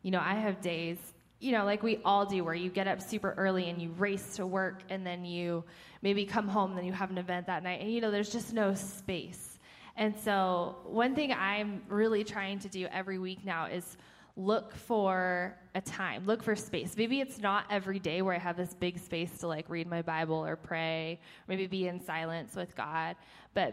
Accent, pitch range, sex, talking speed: American, 180-210 Hz, female, 225 wpm